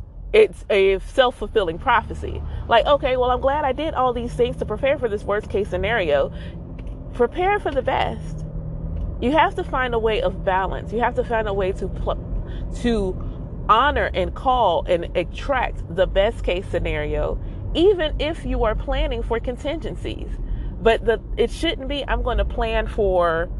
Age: 30-49